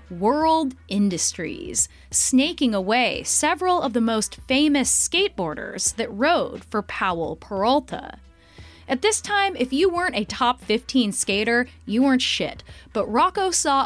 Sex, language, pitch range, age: female, English, 210-295 Hz, 20-39